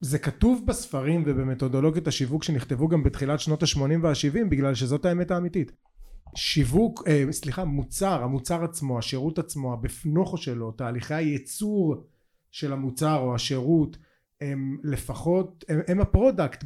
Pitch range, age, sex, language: 130-165 Hz, 30-49, male, Hebrew